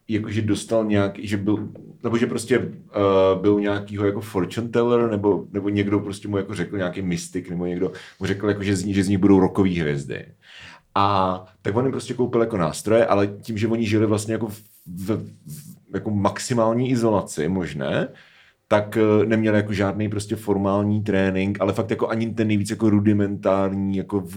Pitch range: 95-115 Hz